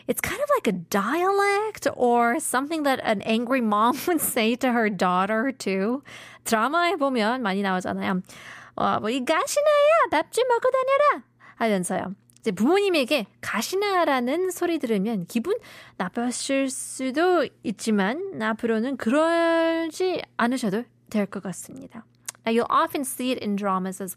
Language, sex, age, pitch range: Korean, female, 20-39, 210-310 Hz